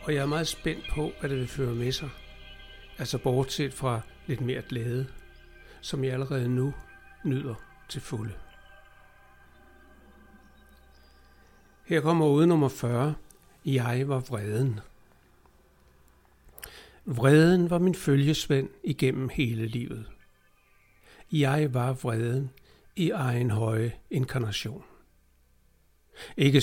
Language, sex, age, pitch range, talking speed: Danish, male, 60-79, 120-150 Hz, 110 wpm